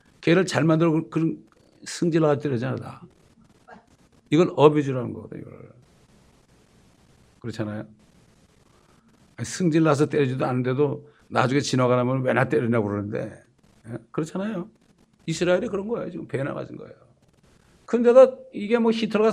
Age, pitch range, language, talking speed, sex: 60-79, 125-190 Hz, English, 110 wpm, male